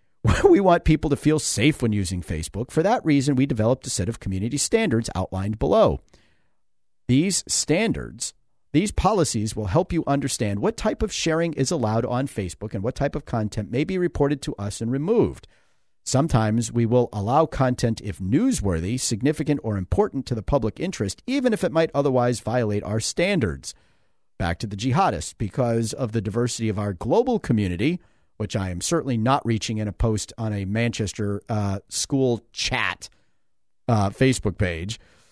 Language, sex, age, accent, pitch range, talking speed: English, male, 50-69, American, 105-140 Hz, 170 wpm